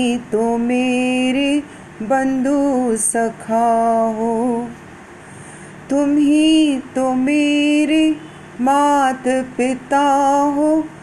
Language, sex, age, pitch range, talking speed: Punjabi, female, 30-49, 235-285 Hz, 65 wpm